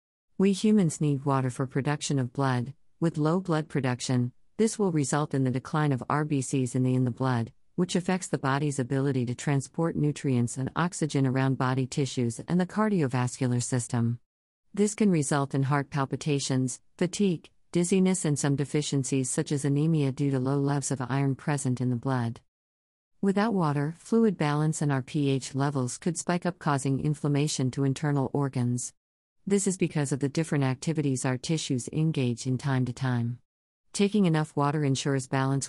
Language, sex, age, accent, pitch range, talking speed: English, female, 50-69, American, 130-155 Hz, 170 wpm